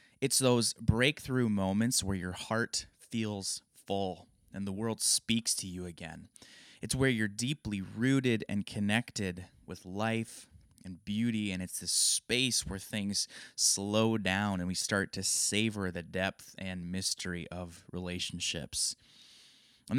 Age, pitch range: 20-39, 95-120 Hz